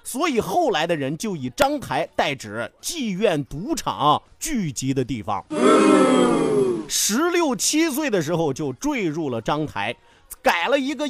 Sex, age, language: male, 30-49, Chinese